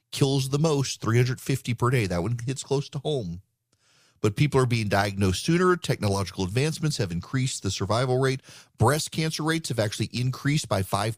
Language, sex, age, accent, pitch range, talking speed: English, male, 40-59, American, 110-140 Hz, 175 wpm